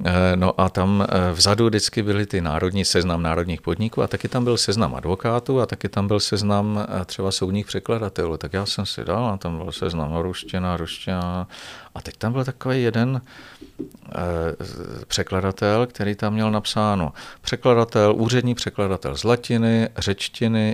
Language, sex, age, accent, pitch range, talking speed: Czech, male, 40-59, native, 90-110 Hz, 155 wpm